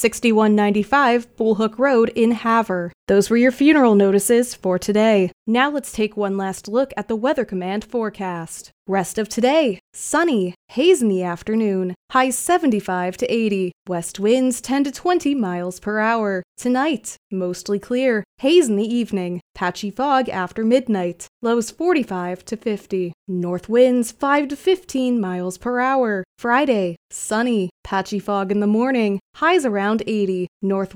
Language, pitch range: English, 195-250 Hz